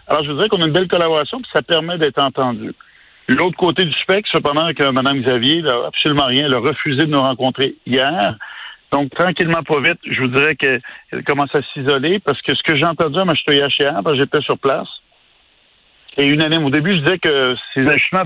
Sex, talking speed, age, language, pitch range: male, 215 wpm, 50-69, French, 135-170 Hz